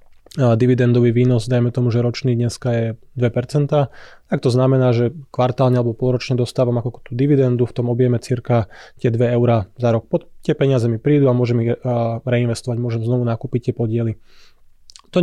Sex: male